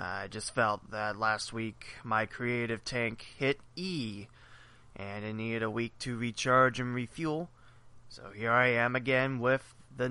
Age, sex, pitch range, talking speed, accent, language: 20-39, male, 115-145 Hz, 160 wpm, American, English